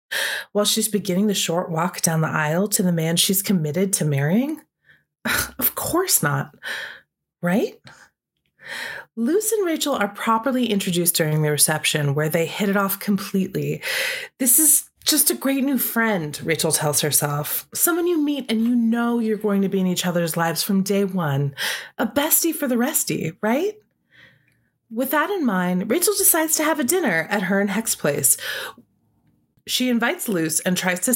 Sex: female